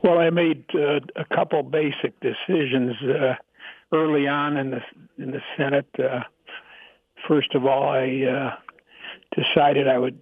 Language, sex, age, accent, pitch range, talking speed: English, male, 60-79, American, 130-150 Hz, 145 wpm